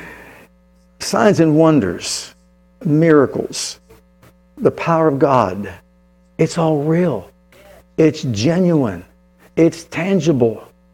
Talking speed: 80 wpm